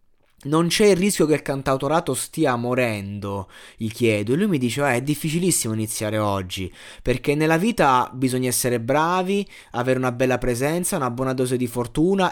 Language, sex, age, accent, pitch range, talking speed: Italian, male, 20-39, native, 115-150 Hz, 170 wpm